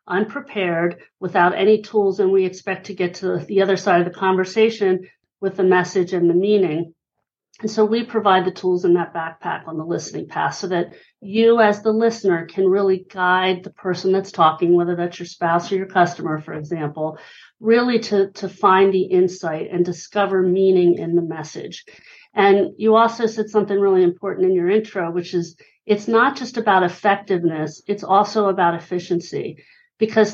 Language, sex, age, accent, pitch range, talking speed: English, female, 50-69, American, 175-205 Hz, 180 wpm